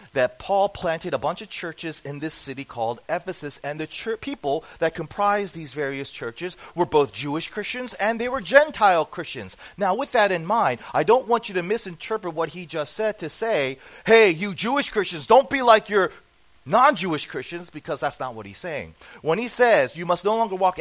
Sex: male